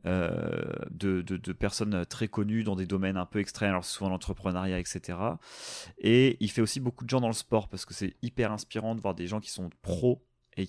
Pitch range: 95-115 Hz